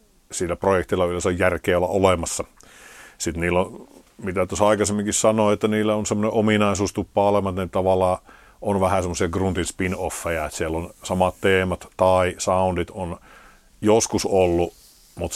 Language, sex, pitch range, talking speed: Finnish, male, 85-100 Hz, 145 wpm